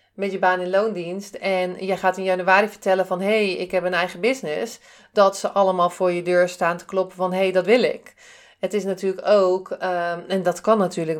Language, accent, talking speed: Dutch, Dutch, 230 wpm